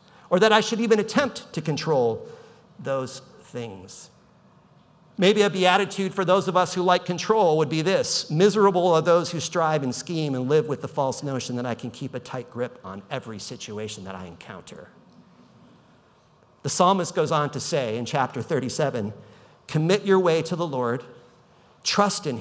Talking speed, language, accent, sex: 175 wpm, English, American, male